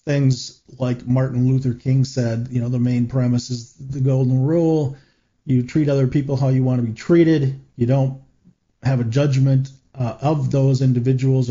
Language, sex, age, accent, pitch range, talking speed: English, male, 40-59, American, 120-135 Hz, 175 wpm